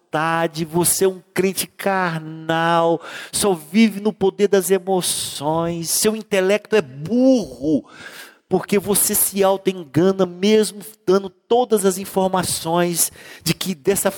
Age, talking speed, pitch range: 50-69, 115 wpm, 135-185 Hz